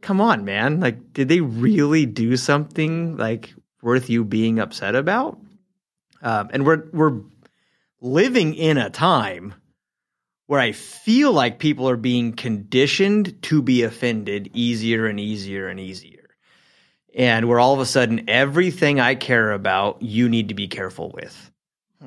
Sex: male